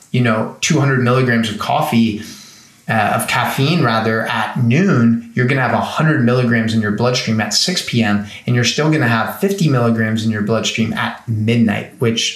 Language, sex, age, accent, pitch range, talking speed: English, male, 30-49, American, 110-125 Hz, 190 wpm